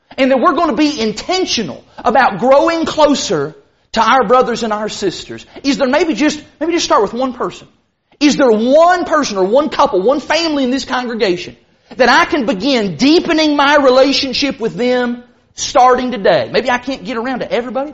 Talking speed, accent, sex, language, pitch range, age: 185 wpm, American, male, English, 225-315 Hz, 40-59